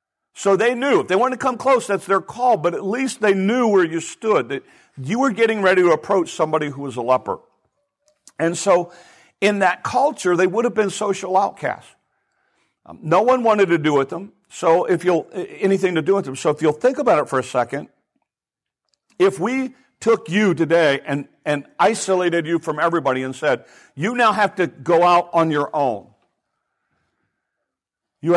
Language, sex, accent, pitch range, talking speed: English, male, American, 160-215 Hz, 195 wpm